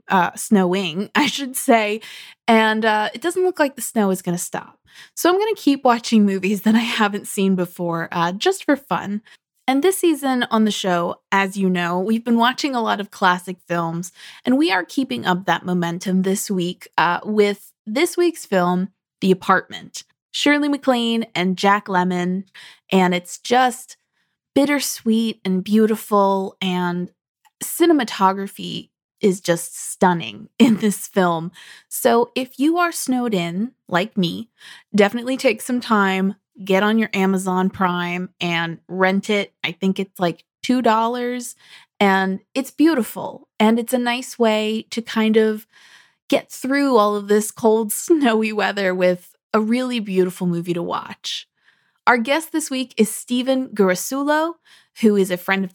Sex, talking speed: female, 160 wpm